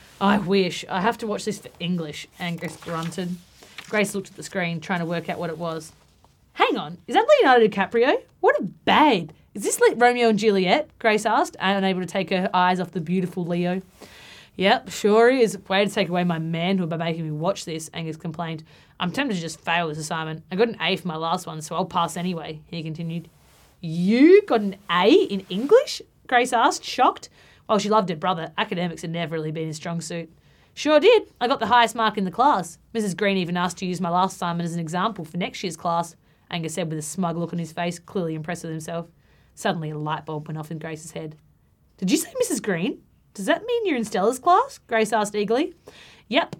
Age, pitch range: 20-39, 170-215 Hz